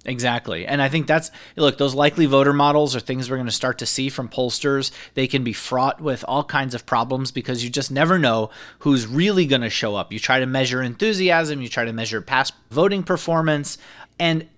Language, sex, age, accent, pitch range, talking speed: English, male, 30-49, American, 125-155 Hz, 220 wpm